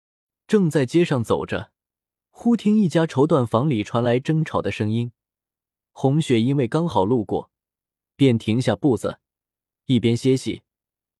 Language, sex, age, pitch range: Chinese, male, 20-39, 110-160 Hz